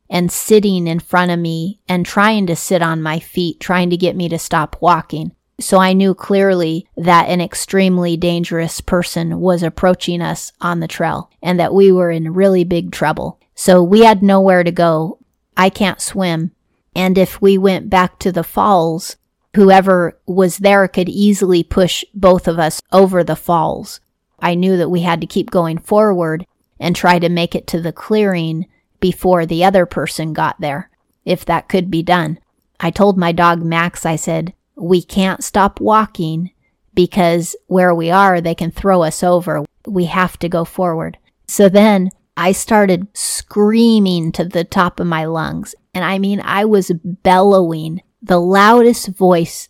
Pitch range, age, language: 170-195 Hz, 30-49, English